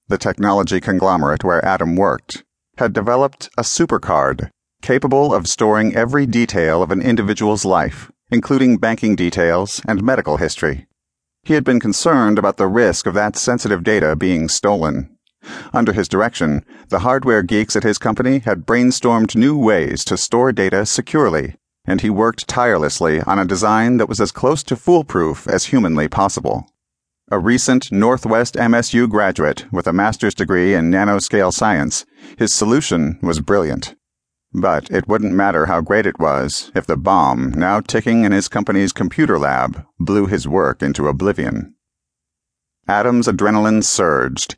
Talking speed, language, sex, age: 150 wpm, English, male, 40-59